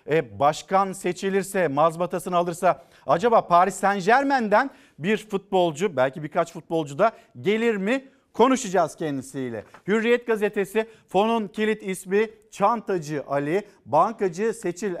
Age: 50-69